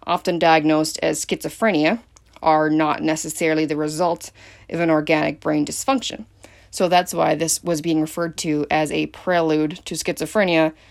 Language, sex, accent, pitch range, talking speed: English, female, American, 155-170 Hz, 150 wpm